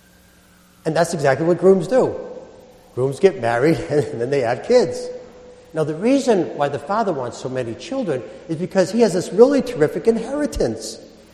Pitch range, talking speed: 145-225 Hz, 170 wpm